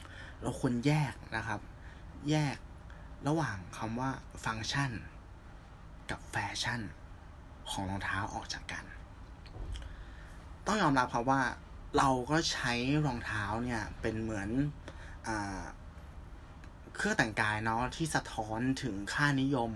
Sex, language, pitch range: male, Thai, 90-120 Hz